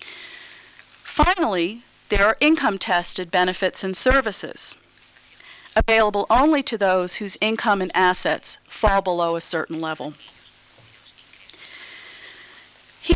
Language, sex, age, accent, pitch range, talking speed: Spanish, female, 40-59, American, 175-230 Hz, 95 wpm